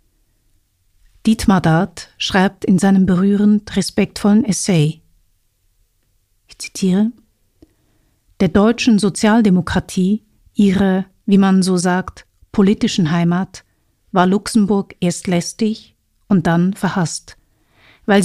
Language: German